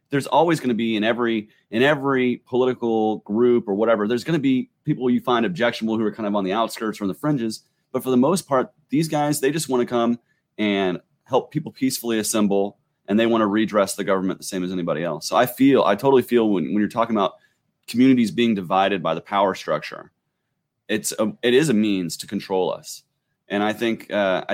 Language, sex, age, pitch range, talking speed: English, male, 30-49, 95-120 Hz, 225 wpm